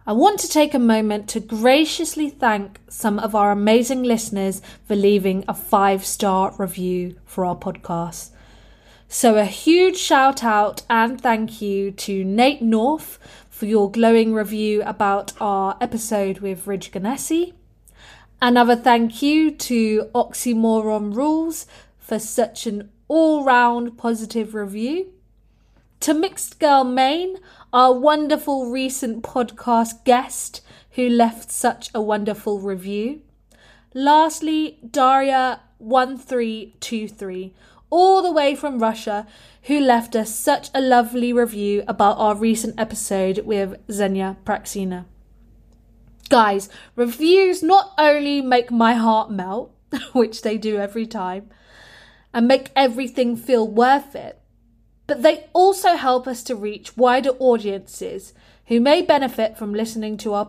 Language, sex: English, female